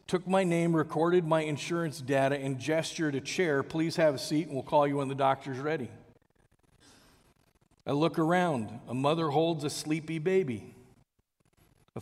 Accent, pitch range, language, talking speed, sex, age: American, 145-180 Hz, English, 165 wpm, male, 40-59